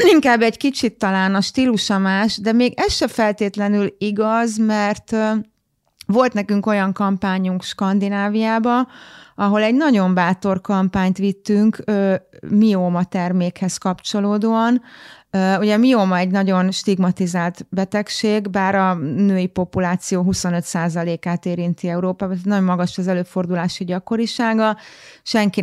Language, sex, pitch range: Hungarian, female, 185-215 Hz